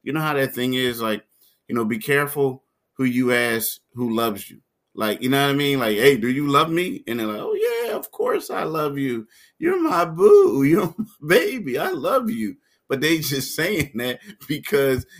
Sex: male